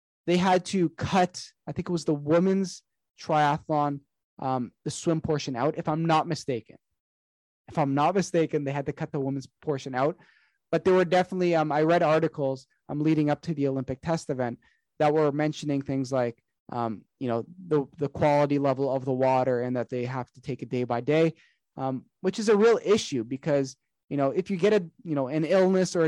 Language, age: English, 20-39